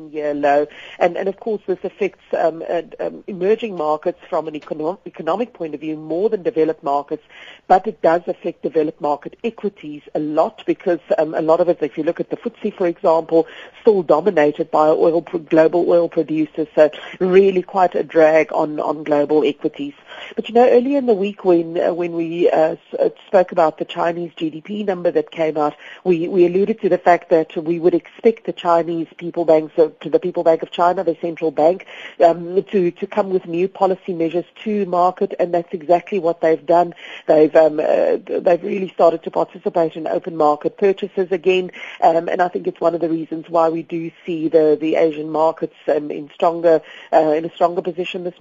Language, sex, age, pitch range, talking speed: English, female, 50-69, 160-185 Hz, 205 wpm